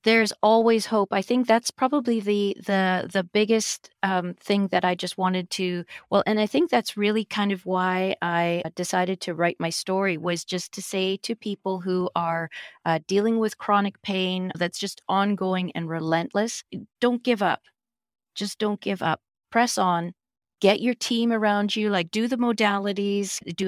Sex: female